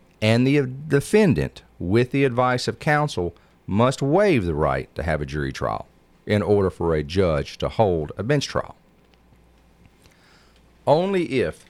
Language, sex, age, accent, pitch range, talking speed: English, male, 40-59, American, 80-120 Hz, 150 wpm